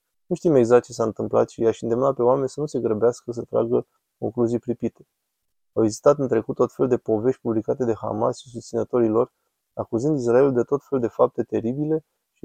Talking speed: 200 wpm